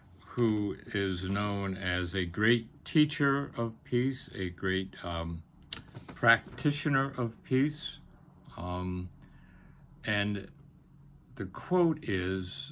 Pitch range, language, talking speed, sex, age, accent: 95-130 Hz, English, 95 wpm, male, 60-79, American